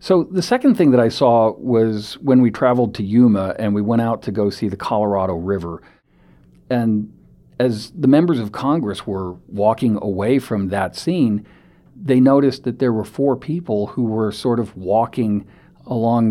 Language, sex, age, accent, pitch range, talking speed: English, male, 50-69, American, 95-120 Hz, 175 wpm